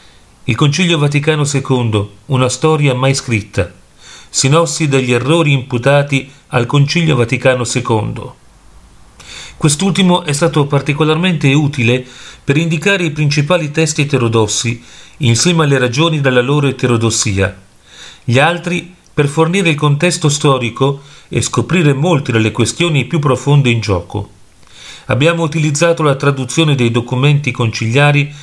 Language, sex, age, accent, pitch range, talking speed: Italian, male, 40-59, native, 120-150 Hz, 120 wpm